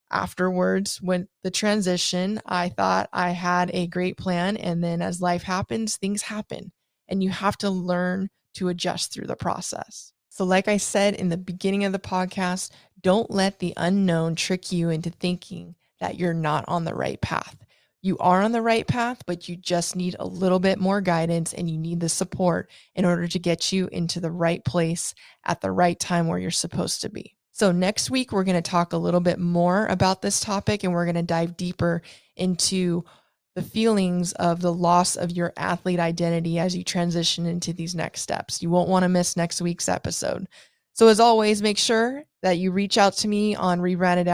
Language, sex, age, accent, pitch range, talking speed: English, female, 20-39, American, 175-195 Hz, 200 wpm